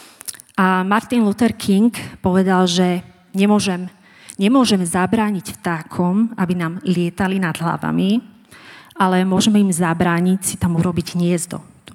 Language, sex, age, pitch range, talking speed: Czech, female, 30-49, 180-220 Hz, 120 wpm